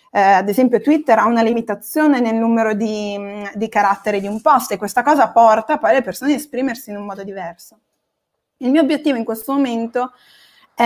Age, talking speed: 20-39, 195 wpm